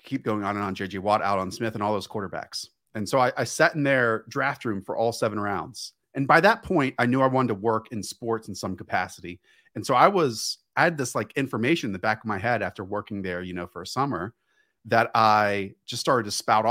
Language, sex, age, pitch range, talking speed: English, male, 30-49, 105-140 Hz, 255 wpm